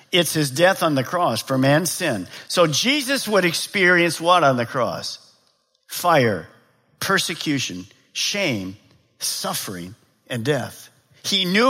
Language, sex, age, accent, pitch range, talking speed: English, male, 50-69, American, 140-205 Hz, 130 wpm